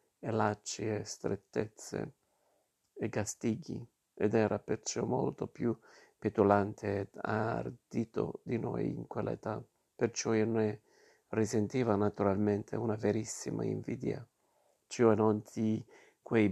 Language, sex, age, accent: Italian, male, 50-69, native